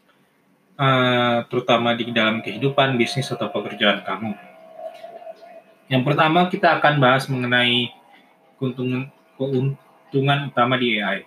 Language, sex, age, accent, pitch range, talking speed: Indonesian, male, 20-39, native, 120-140 Hz, 105 wpm